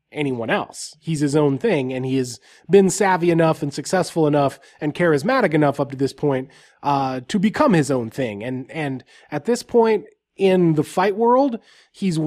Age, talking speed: 20-39, 185 wpm